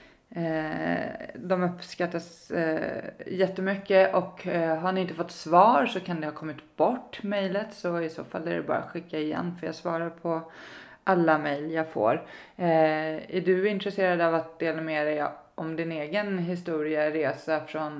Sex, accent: female, native